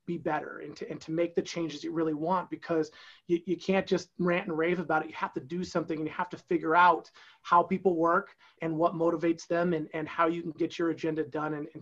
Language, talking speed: English, 260 wpm